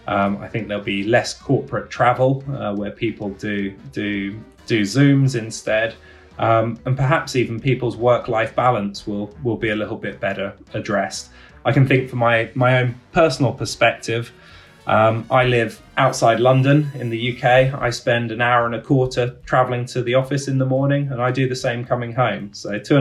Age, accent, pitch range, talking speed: 20-39, British, 110-130 Hz, 185 wpm